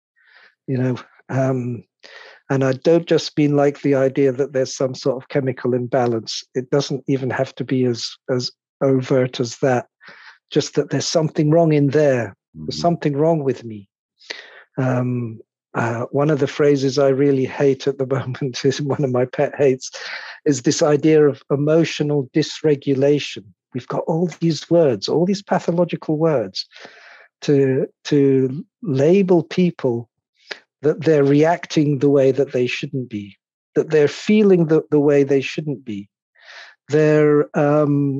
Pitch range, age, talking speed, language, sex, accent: 130-165 Hz, 50-69, 155 wpm, English, male, British